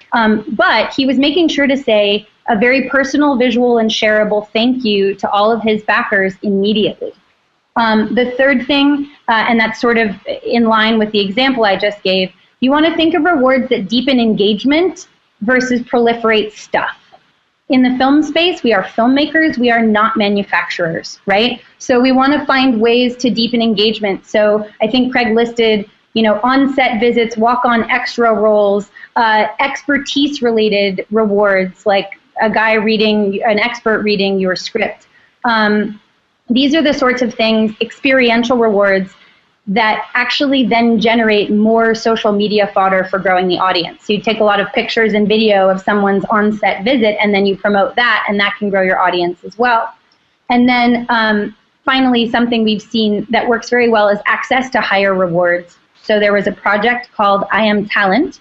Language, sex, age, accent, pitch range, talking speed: English, female, 30-49, American, 210-245 Hz, 170 wpm